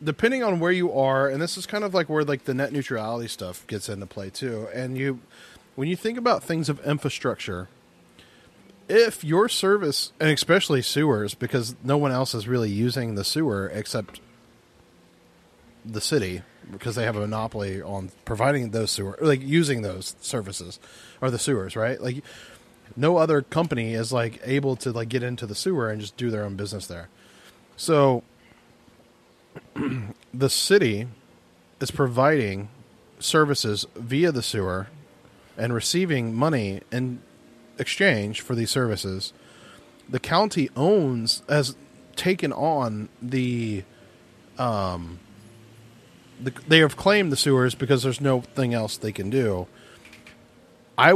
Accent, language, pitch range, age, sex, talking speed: American, English, 110-145 Hz, 30-49, male, 145 wpm